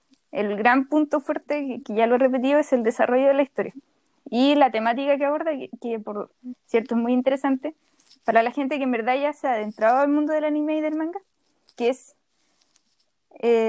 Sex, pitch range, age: female, 240-290 Hz, 10-29